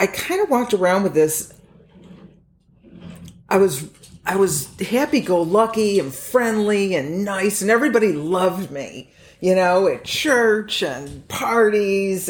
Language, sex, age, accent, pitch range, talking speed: English, female, 50-69, American, 145-195 Hz, 125 wpm